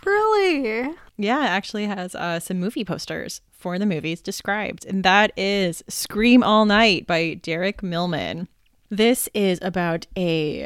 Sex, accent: female, American